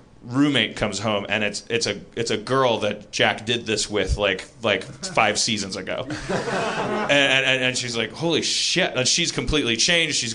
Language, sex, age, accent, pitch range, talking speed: English, male, 30-49, American, 105-130 Hz, 185 wpm